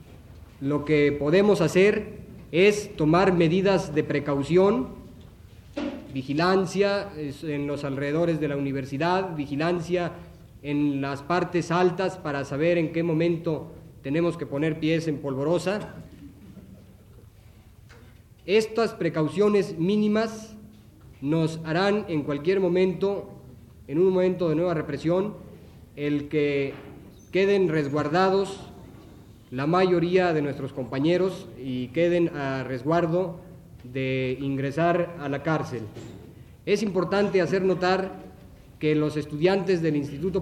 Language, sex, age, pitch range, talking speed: Spanish, male, 40-59, 135-180 Hz, 110 wpm